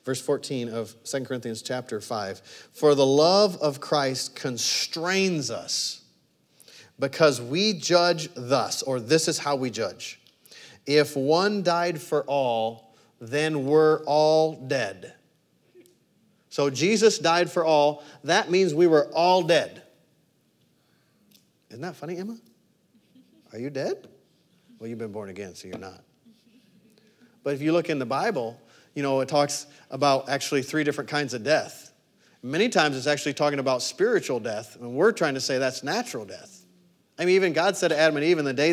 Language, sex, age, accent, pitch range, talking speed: English, male, 40-59, American, 135-170 Hz, 165 wpm